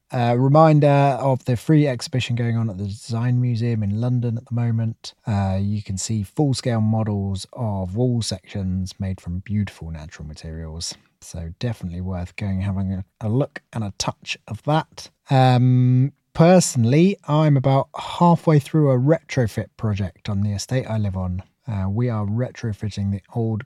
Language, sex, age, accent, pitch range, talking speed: English, male, 20-39, British, 100-140 Hz, 165 wpm